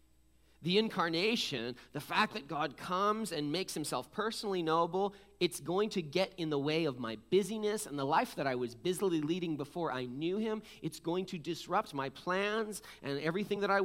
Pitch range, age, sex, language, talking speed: 165-225 Hz, 30-49, male, English, 190 wpm